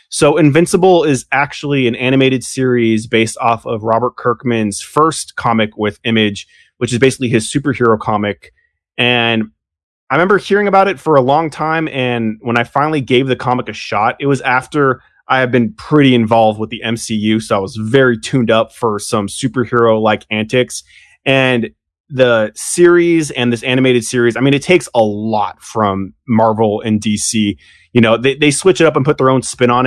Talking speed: 185 wpm